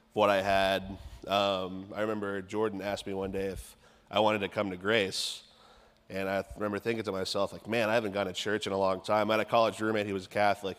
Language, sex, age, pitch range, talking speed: English, male, 30-49, 95-105 Hz, 245 wpm